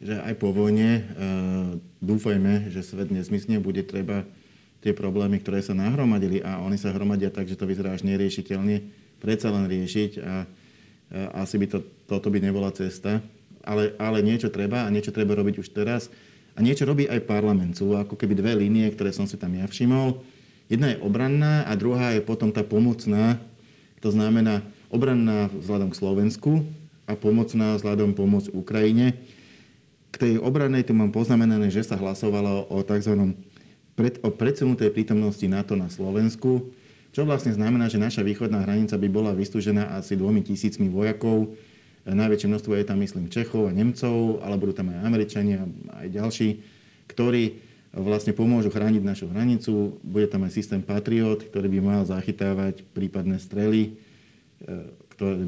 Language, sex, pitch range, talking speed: Slovak, male, 100-110 Hz, 160 wpm